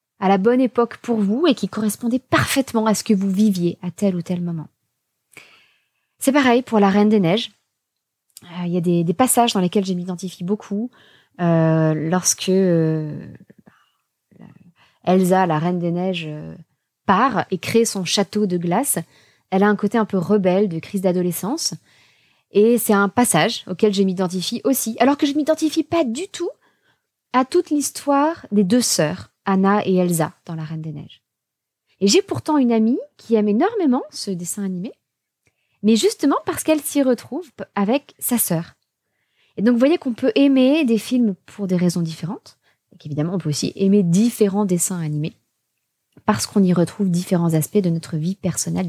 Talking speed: 175 wpm